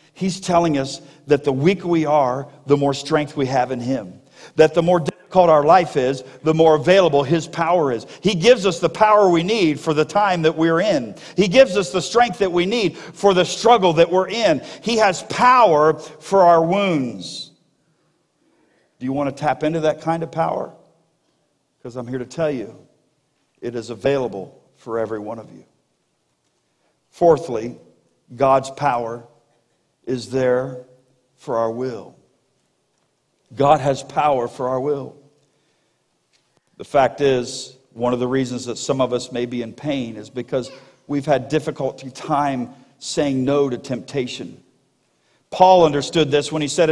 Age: 50-69